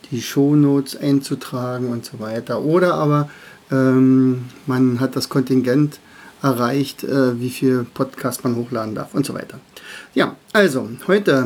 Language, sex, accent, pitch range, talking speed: German, male, German, 130-150 Hz, 140 wpm